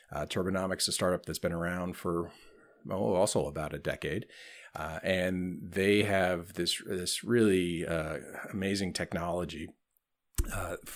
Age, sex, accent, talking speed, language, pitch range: 40-59, male, American, 130 wpm, English, 85-100 Hz